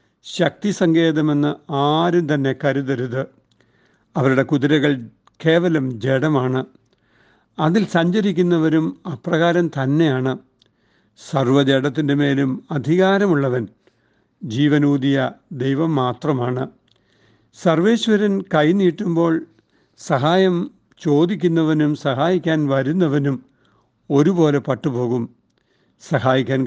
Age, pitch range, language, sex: 60-79, 130-160 Hz, Malayalam, male